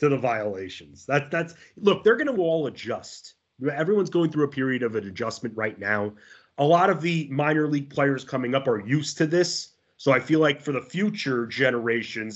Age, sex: 30-49, male